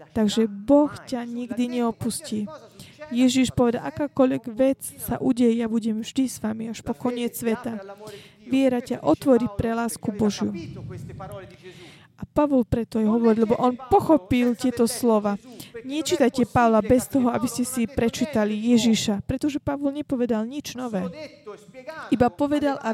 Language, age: Slovak, 20-39